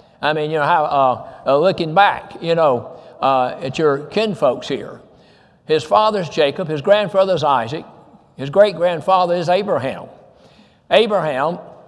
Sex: male